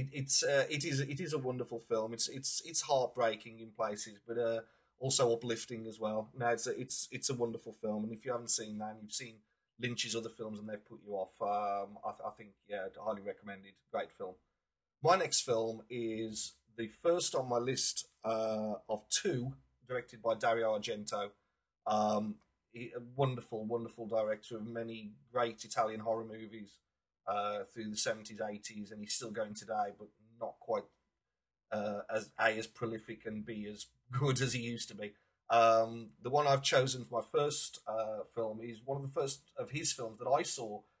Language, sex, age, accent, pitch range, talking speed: English, male, 30-49, British, 110-120 Hz, 195 wpm